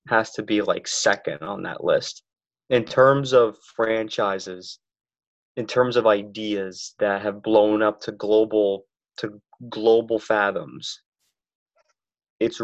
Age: 20-39